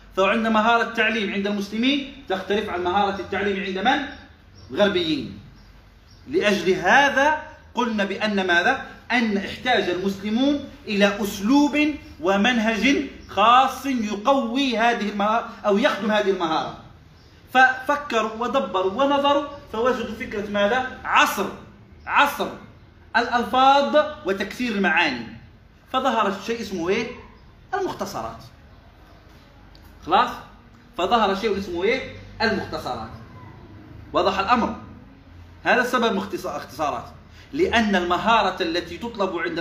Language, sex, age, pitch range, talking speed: Arabic, male, 30-49, 185-255 Hz, 95 wpm